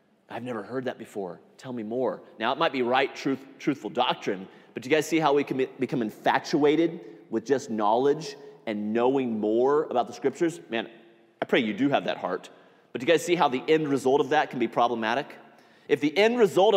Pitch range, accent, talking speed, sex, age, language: 135-195 Hz, American, 215 wpm, male, 30-49, English